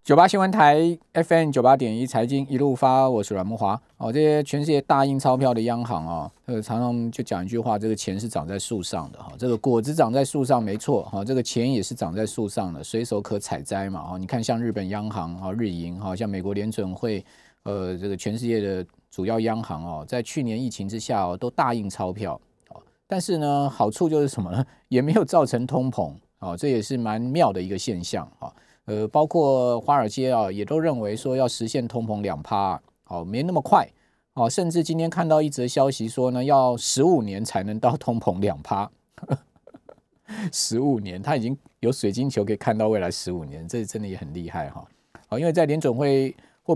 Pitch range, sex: 105-135 Hz, male